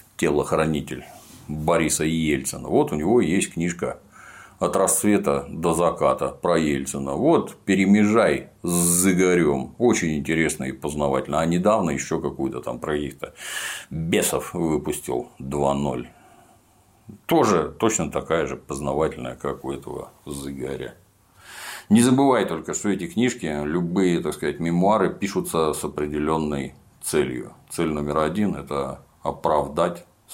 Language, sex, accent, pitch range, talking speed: Russian, male, native, 70-95 Hz, 120 wpm